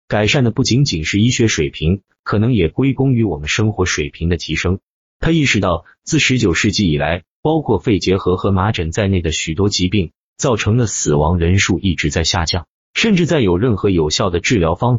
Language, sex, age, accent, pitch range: Chinese, male, 30-49, native, 85-120 Hz